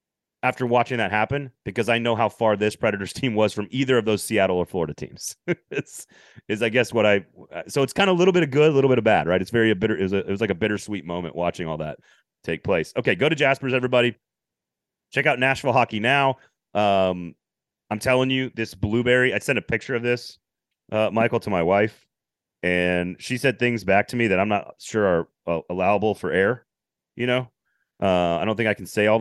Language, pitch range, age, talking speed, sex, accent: English, 100-130 Hz, 30-49, 230 wpm, male, American